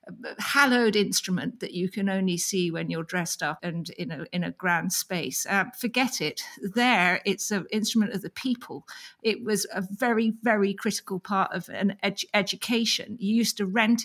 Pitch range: 180-220 Hz